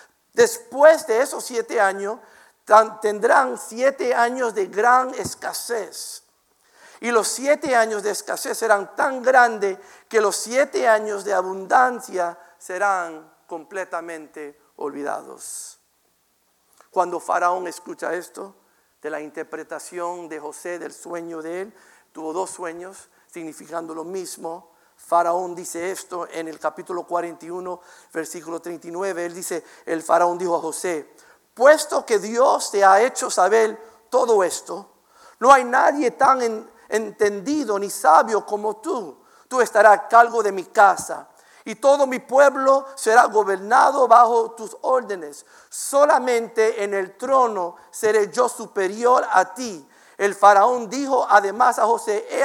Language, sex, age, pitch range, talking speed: English, male, 50-69, 175-245 Hz, 130 wpm